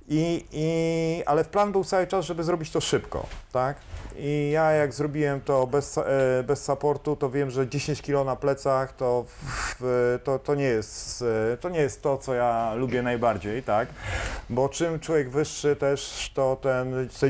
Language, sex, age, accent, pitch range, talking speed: Polish, male, 40-59, native, 115-145 Hz, 175 wpm